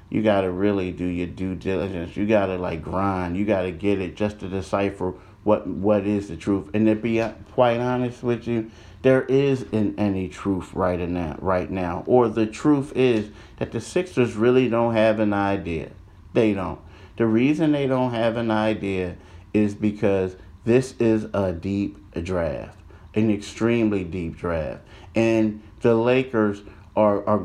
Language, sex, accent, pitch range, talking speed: English, male, American, 95-110 Hz, 175 wpm